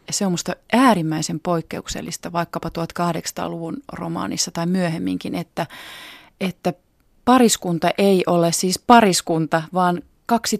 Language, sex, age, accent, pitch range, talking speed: Finnish, female, 30-49, native, 160-190 Hz, 110 wpm